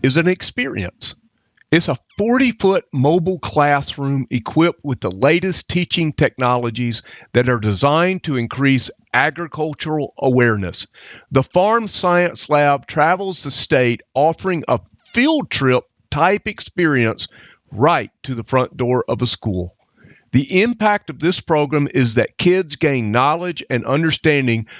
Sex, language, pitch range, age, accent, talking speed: male, English, 125-175 Hz, 50-69, American, 135 wpm